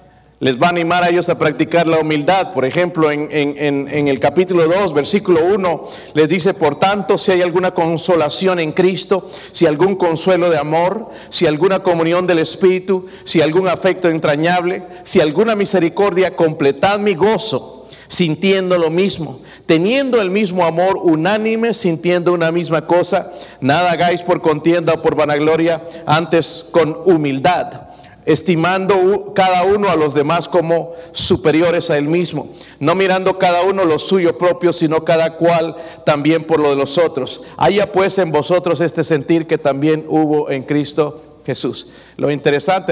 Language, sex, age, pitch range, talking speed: Spanish, male, 50-69, 150-185 Hz, 155 wpm